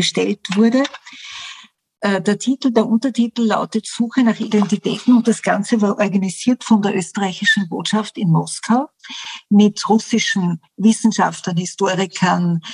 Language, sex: German, female